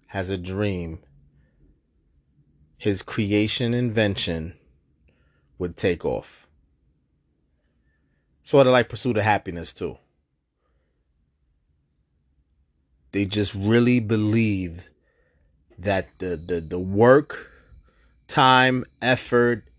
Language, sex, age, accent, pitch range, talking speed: English, male, 30-49, American, 70-115 Hz, 80 wpm